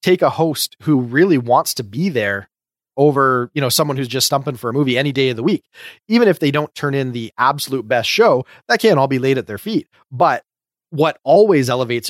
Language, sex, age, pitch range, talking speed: English, male, 30-49, 125-155 Hz, 230 wpm